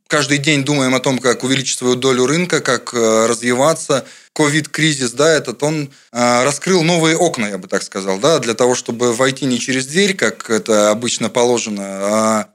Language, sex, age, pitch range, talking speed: Russian, male, 20-39, 115-145 Hz, 170 wpm